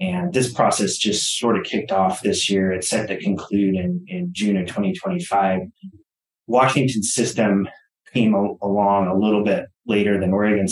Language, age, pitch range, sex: English, 30-49, 95-115 Hz, male